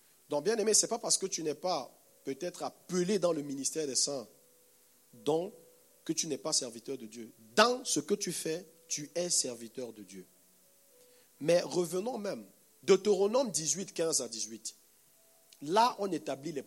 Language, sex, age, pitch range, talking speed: French, male, 50-69, 130-200 Hz, 175 wpm